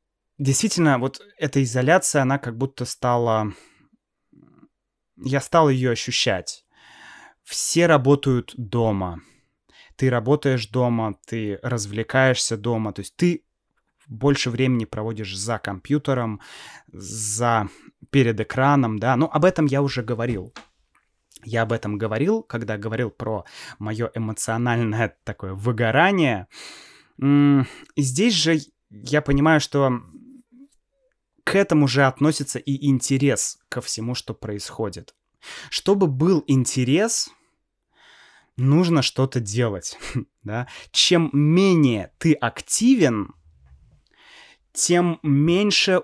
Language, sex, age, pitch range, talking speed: Russian, male, 20-39, 115-145 Hz, 105 wpm